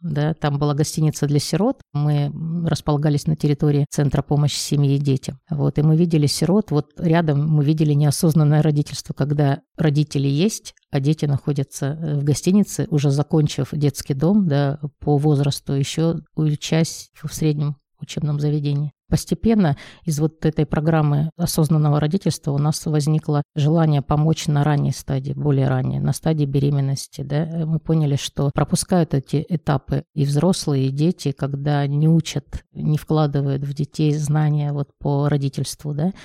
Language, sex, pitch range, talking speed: Russian, female, 145-160 Hz, 145 wpm